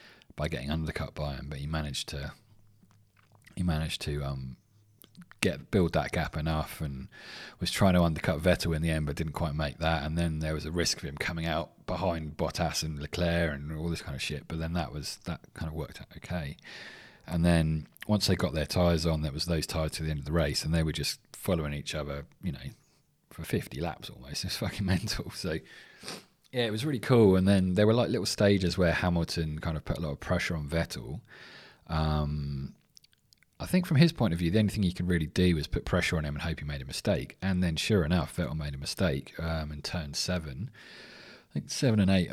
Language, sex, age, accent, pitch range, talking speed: English, male, 30-49, British, 75-95 Hz, 230 wpm